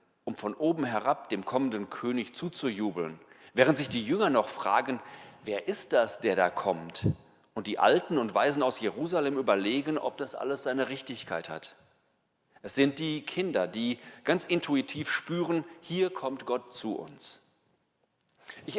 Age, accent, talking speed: 40-59, German, 155 wpm